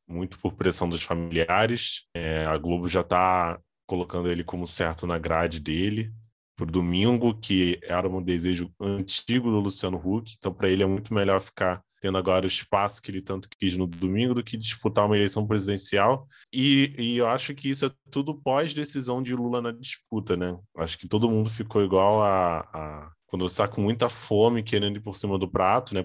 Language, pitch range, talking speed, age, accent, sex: Portuguese, 90-110 Hz, 195 wpm, 20-39, Brazilian, male